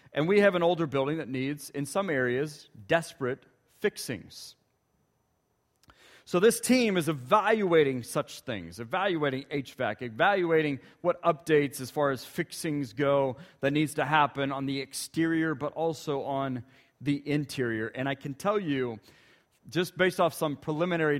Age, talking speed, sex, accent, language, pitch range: 40-59, 145 wpm, male, American, English, 130-170 Hz